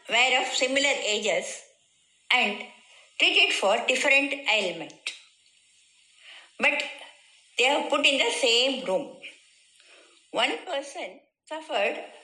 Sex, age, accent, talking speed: female, 50-69, Indian, 100 wpm